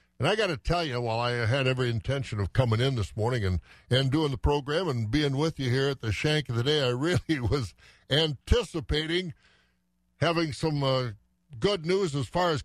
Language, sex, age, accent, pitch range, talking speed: English, male, 60-79, American, 110-145 Hz, 210 wpm